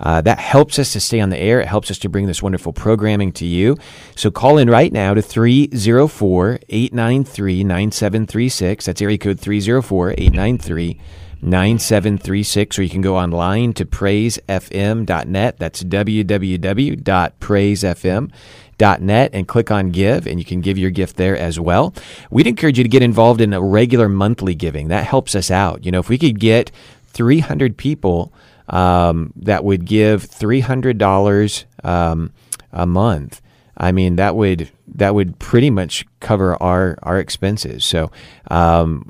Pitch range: 90-110 Hz